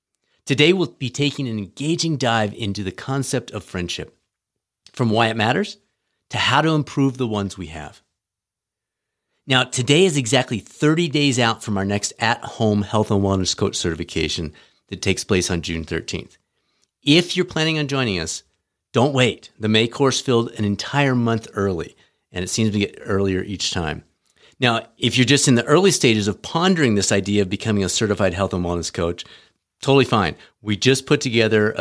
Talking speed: 180 wpm